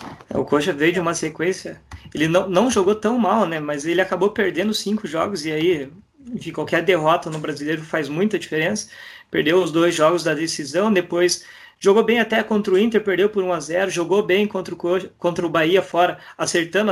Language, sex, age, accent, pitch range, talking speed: Portuguese, male, 20-39, Brazilian, 155-185 Hz, 185 wpm